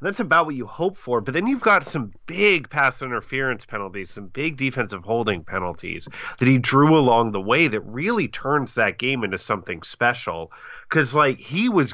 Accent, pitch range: American, 110-150 Hz